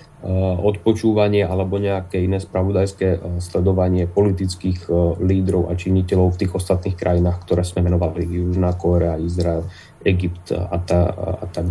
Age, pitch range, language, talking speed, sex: 30-49, 95-110 Hz, Slovak, 130 wpm, male